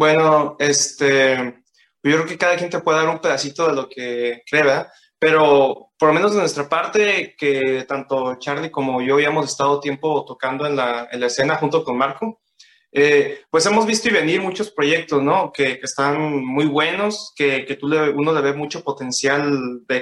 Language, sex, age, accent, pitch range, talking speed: Spanish, male, 20-39, Mexican, 135-155 Hz, 195 wpm